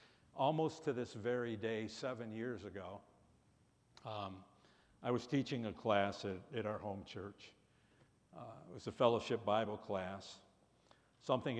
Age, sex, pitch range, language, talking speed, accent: 60-79, male, 105-125 Hz, English, 140 wpm, American